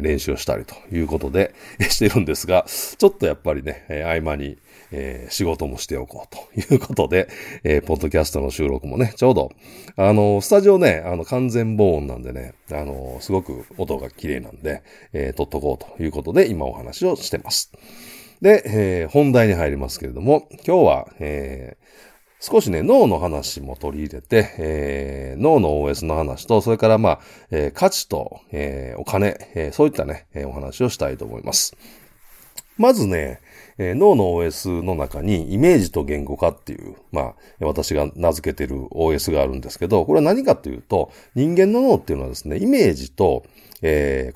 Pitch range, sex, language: 70-105 Hz, male, Japanese